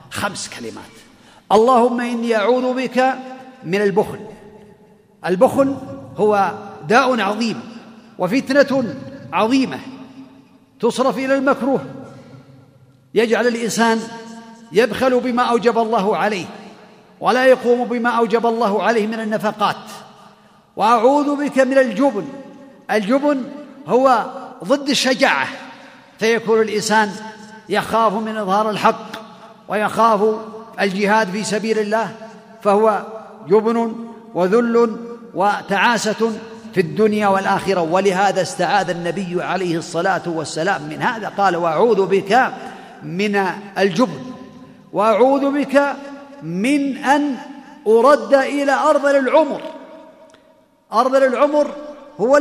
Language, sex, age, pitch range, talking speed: Arabic, male, 50-69, 210-270 Hz, 95 wpm